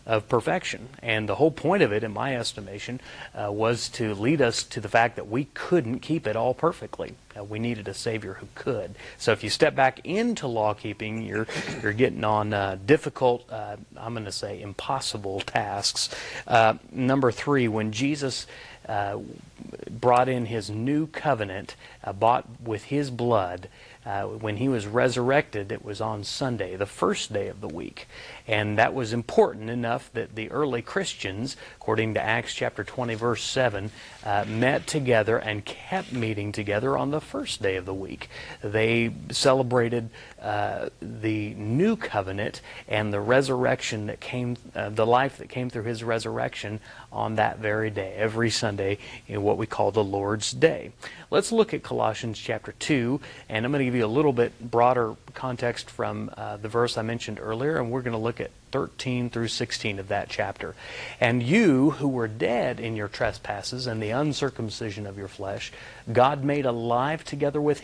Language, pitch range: English, 105-130 Hz